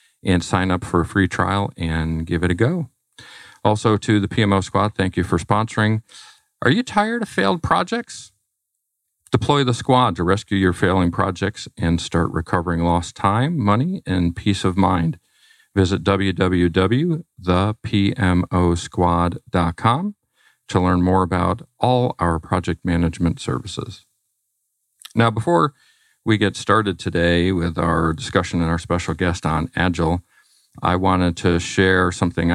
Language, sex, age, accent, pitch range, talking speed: English, male, 50-69, American, 85-105 Hz, 140 wpm